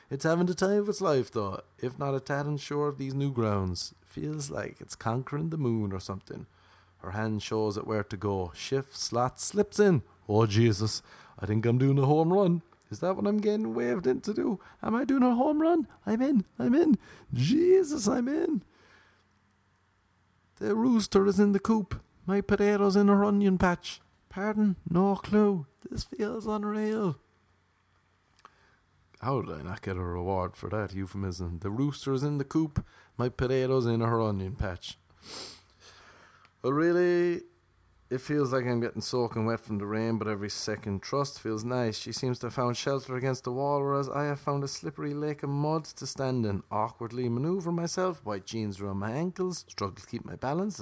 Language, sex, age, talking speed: English, male, 30-49, 185 wpm